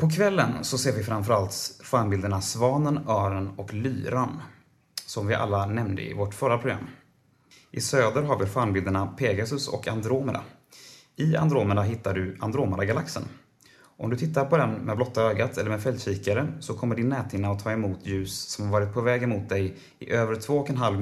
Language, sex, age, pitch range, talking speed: Swedish, male, 30-49, 100-130 Hz, 175 wpm